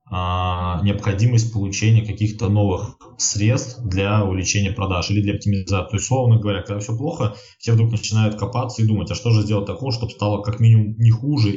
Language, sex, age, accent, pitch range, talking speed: Russian, male, 20-39, native, 95-110 Hz, 180 wpm